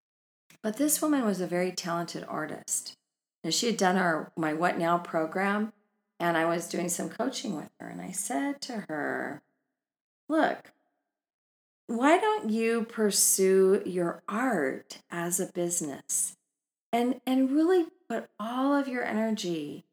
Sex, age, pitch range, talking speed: female, 40-59, 180-255 Hz, 145 wpm